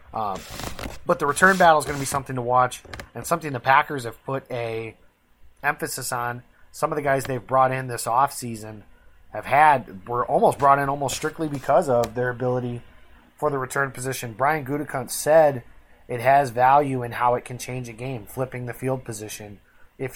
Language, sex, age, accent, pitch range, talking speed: English, male, 30-49, American, 120-145 Hz, 195 wpm